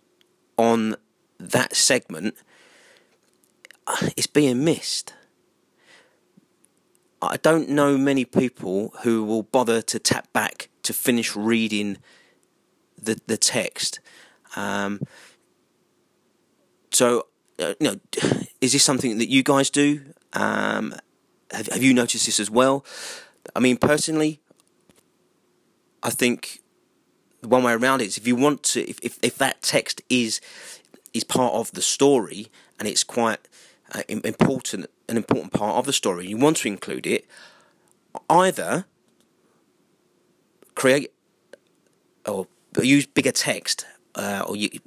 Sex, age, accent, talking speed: male, 30-49, British, 125 wpm